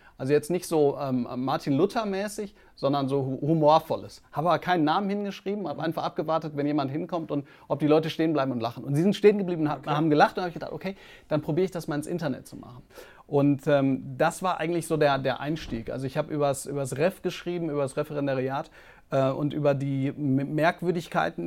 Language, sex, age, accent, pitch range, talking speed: German, male, 40-59, German, 140-175 Hz, 205 wpm